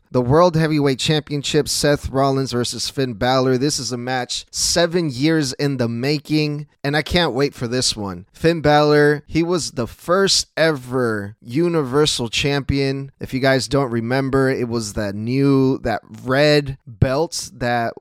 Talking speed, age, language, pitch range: 155 wpm, 20-39, English, 125-155 Hz